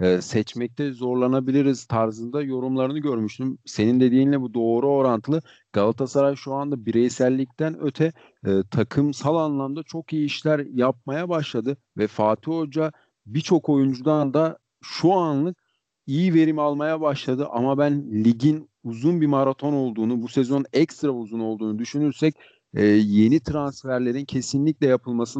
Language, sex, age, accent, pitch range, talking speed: Turkish, male, 40-59, native, 120-145 Hz, 130 wpm